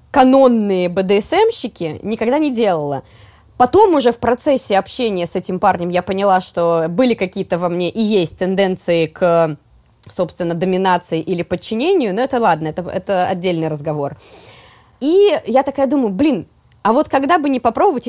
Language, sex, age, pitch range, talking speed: Russian, female, 20-39, 175-250 Hz, 155 wpm